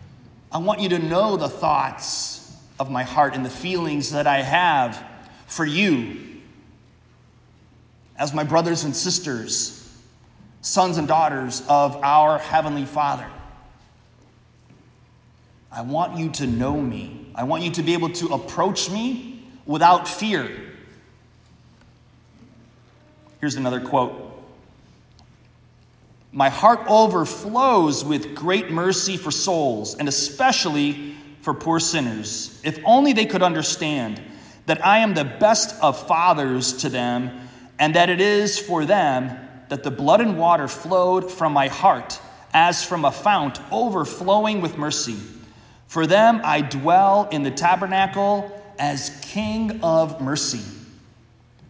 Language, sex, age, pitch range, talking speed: English, male, 30-49, 125-175 Hz, 130 wpm